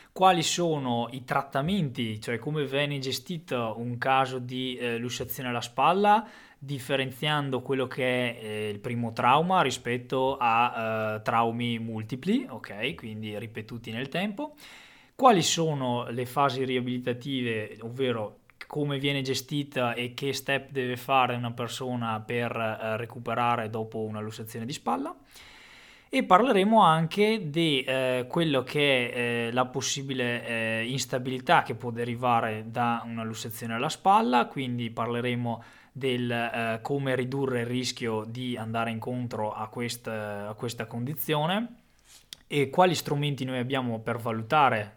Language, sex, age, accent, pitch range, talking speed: Italian, male, 20-39, native, 115-140 Hz, 135 wpm